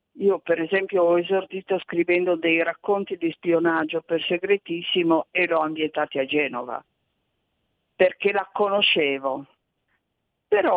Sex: female